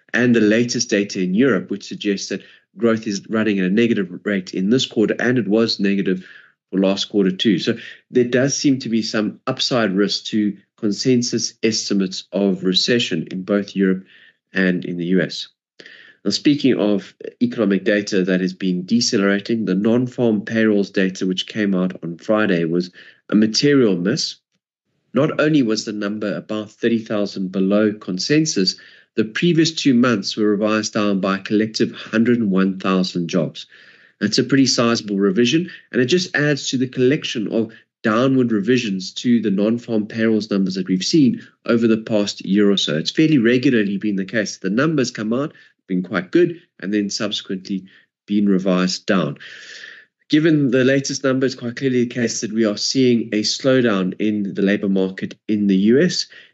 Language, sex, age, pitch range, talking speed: English, male, 30-49, 95-120 Hz, 170 wpm